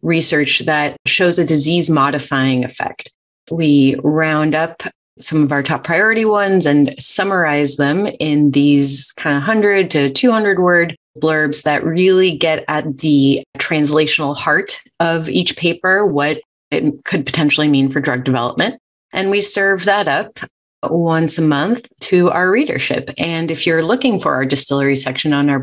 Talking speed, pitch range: 155 wpm, 145-185 Hz